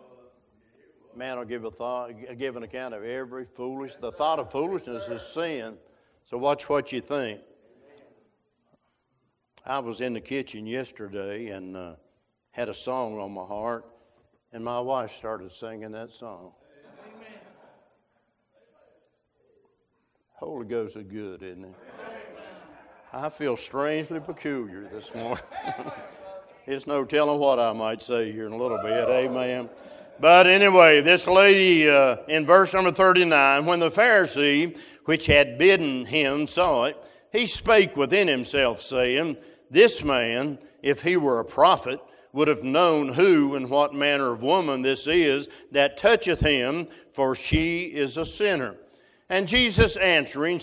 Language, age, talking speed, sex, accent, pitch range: English, 60-79, 145 wpm, male, American, 125-175 Hz